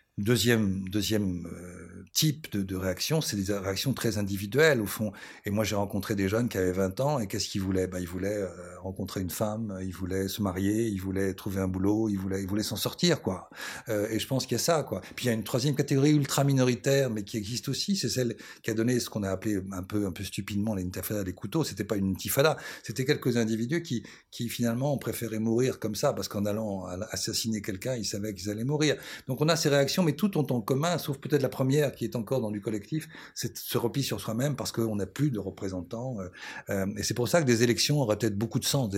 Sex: male